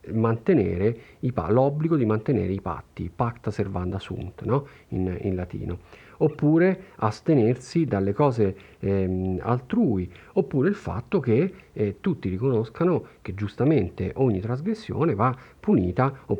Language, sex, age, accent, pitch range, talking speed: Italian, male, 40-59, native, 95-135 Hz, 125 wpm